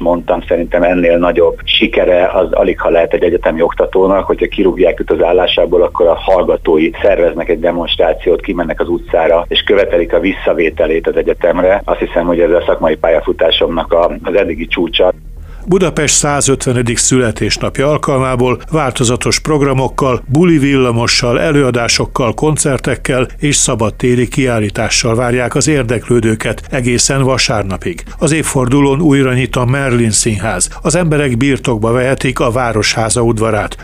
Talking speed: 130 wpm